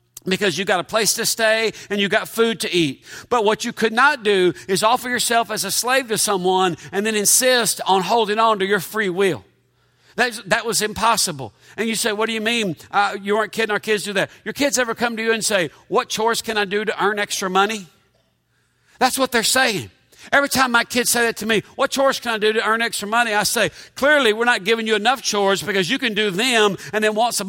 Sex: male